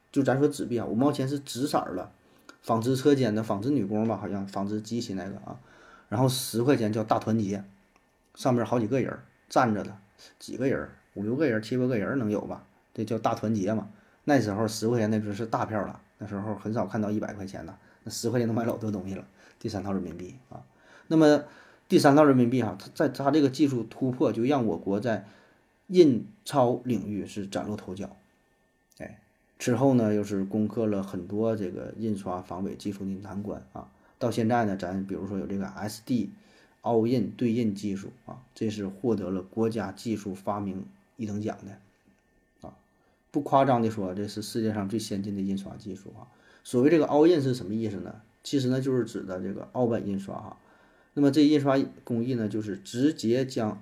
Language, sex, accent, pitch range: Chinese, male, native, 100-125 Hz